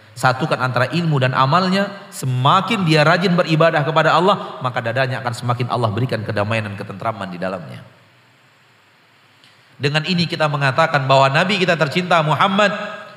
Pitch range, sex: 130-185 Hz, male